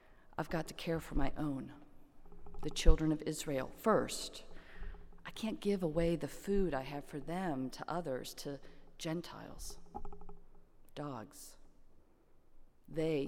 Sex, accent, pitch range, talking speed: female, American, 145-170 Hz, 125 wpm